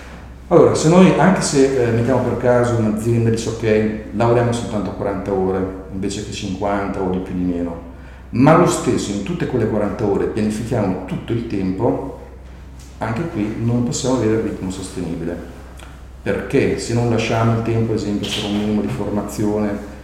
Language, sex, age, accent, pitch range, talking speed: Italian, male, 50-69, native, 95-120 Hz, 170 wpm